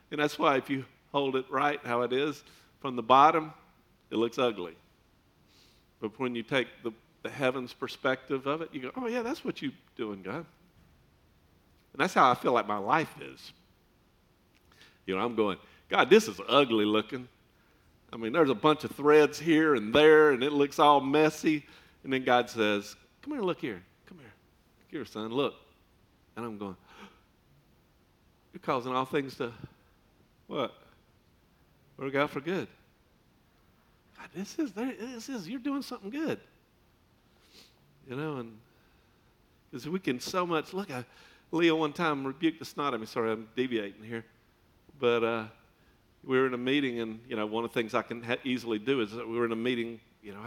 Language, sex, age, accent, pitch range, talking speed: English, male, 50-69, American, 115-150 Hz, 185 wpm